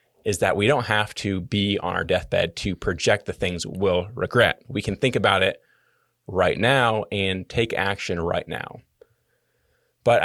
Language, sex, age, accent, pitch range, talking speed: English, male, 30-49, American, 95-115 Hz, 170 wpm